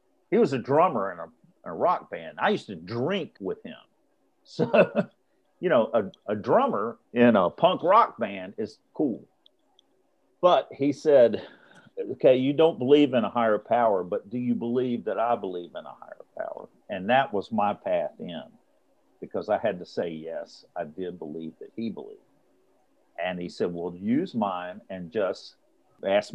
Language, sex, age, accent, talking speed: English, male, 50-69, American, 175 wpm